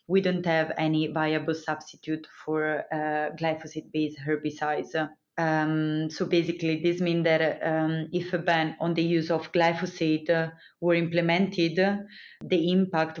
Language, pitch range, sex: English, 160-175 Hz, female